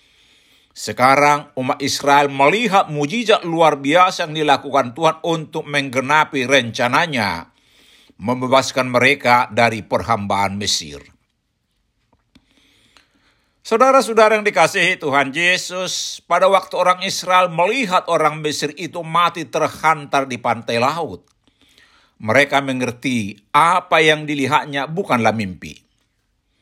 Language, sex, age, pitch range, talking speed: Indonesian, male, 60-79, 140-185 Hz, 95 wpm